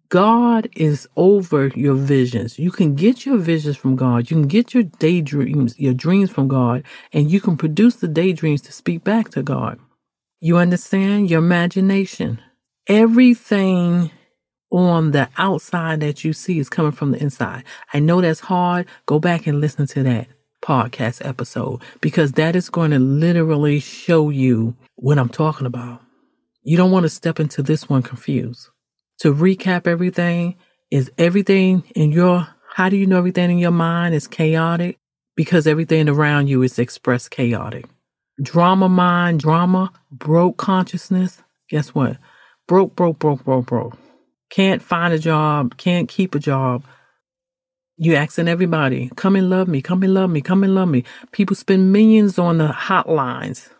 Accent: American